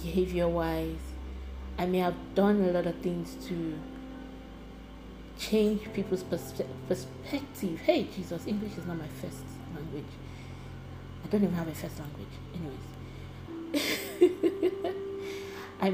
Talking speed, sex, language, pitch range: 120 wpm, female, English, 130-195 Hz